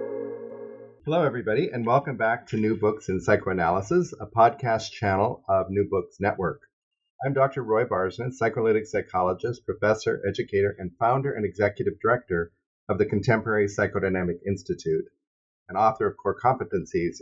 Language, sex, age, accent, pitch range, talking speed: English, male, 50-69, American, 95-145 Hz, 140 wpm